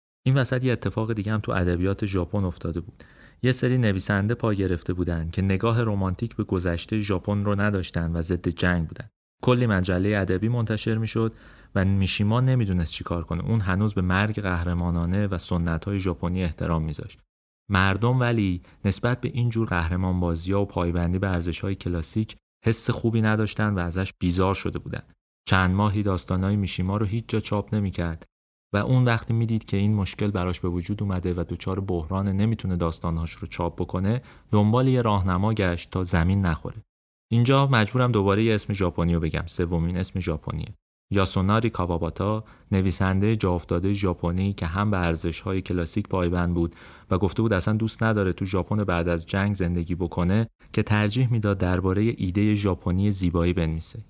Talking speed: 165 wpm